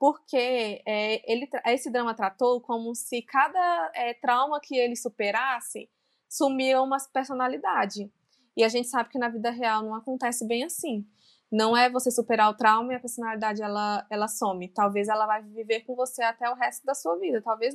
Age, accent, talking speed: 20-39, Brazilian, 170 wpm